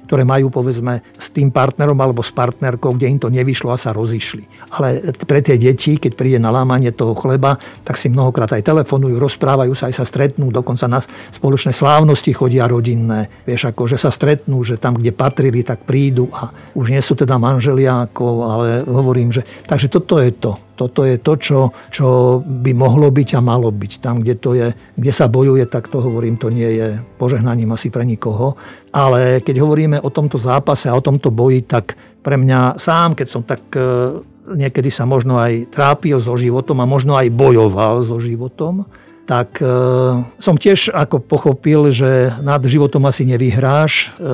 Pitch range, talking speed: 125-140 Hz, 185 wpm